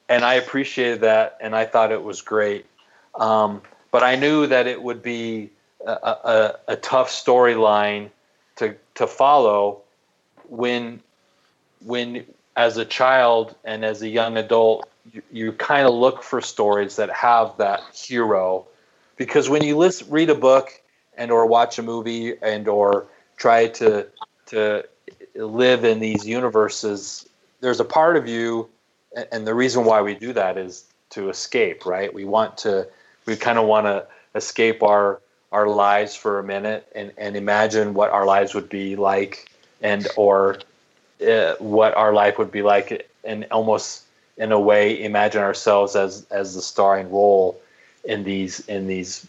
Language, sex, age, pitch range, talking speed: English, male, 30-49, 100-120 Hz, 160 wpm